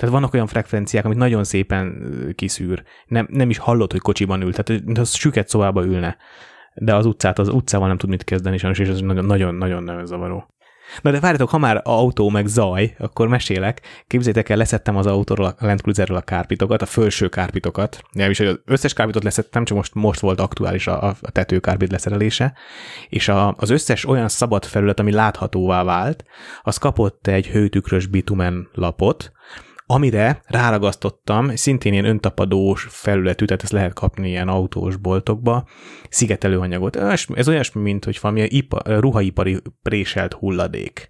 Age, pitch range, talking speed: 20-39, 95-115 Hz, 160 wpm